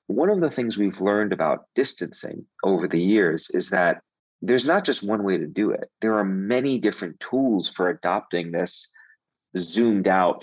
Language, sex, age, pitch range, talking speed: English, male, 40-59, 95-115 Hz, 180 wpm